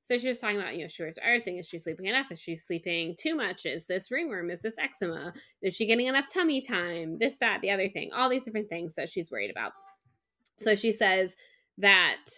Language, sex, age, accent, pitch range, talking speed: English, female, 20-39, American, 180-245 Hz, 235 wpm